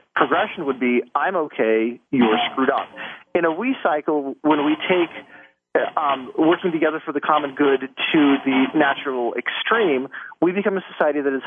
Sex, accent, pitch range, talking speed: male, American, 130-160 Hz, 170 wpm